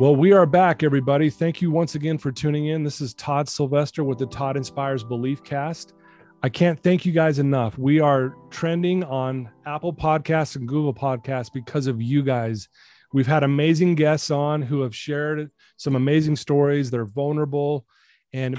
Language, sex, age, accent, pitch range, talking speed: English, male, 30-49, American, 130-155 Hz, 180 wpm